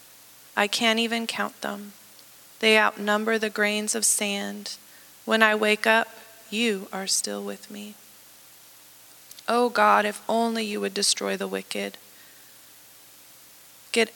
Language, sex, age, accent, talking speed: English, female, 20-39, American, 125 wpm